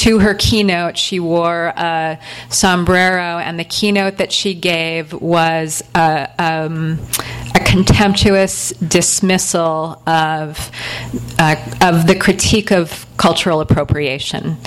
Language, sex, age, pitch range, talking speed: English, female, 30-49, 155-180 Hz, 110 wpm